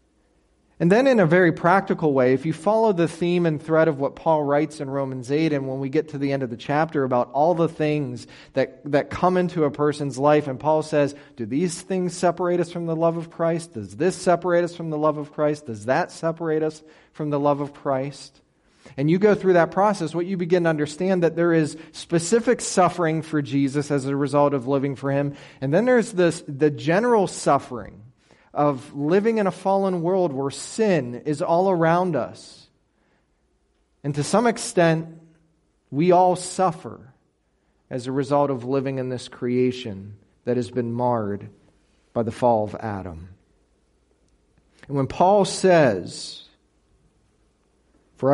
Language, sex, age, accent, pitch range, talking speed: English, male, 30-49, American, 130-170 Hz, 180 wpm